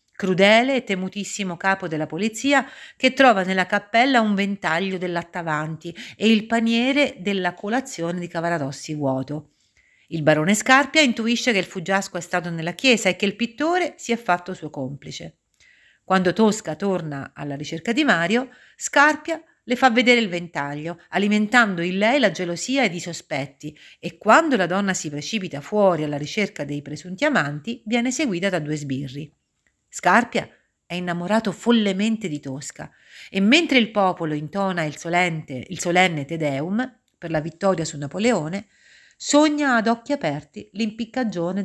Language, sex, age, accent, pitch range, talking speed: Italian, female, 40-59, native, 155-230 Hz, 150 wpm